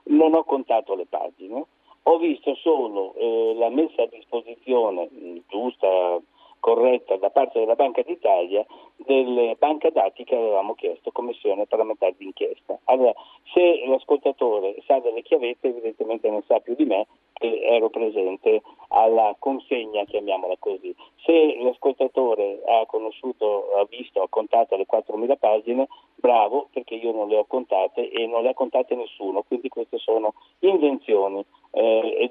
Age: 50-69